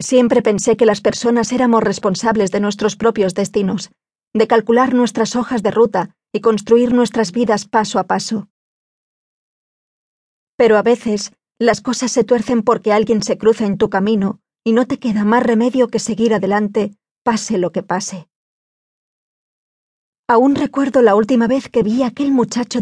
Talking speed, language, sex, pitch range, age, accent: 160 wpm, Spanish, female, 210-245 Hz, 20-39, Spanish